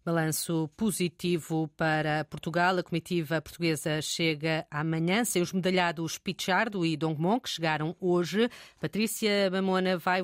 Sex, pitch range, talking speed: female, 170-205 Hz, 125 wpm